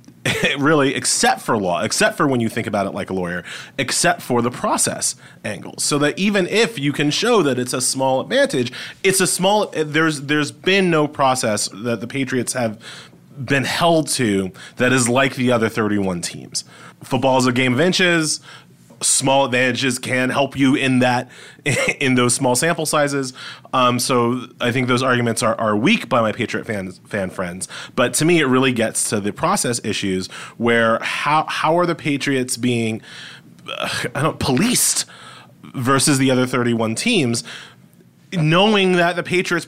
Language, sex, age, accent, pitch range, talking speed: English, male, 30-49, American, 125-160 Hz, 170 wpm